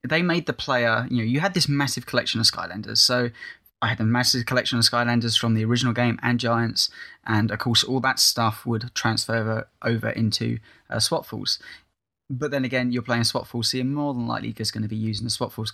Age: 10-29